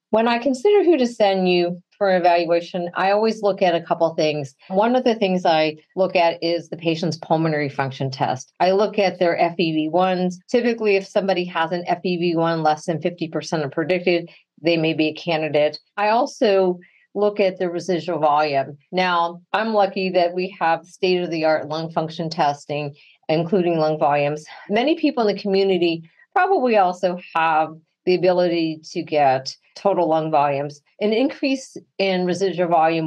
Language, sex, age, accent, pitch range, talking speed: English, female, 40-59, American, 160-195 Hz, 165 wpm